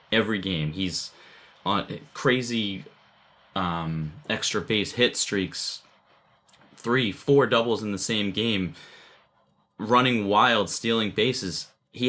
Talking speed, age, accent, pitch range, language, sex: 110 wpm, 30-49, American, 90-115 Hz, English, male